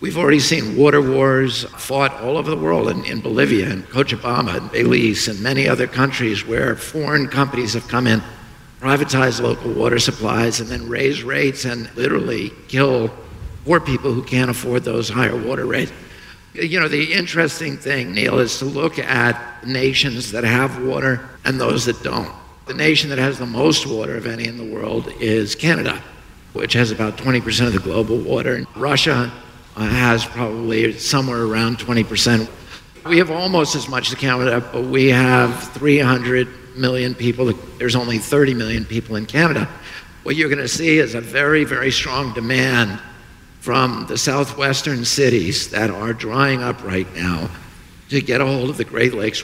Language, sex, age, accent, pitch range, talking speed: English, male, 50-69, American, 115-140 Hz, 170 wpm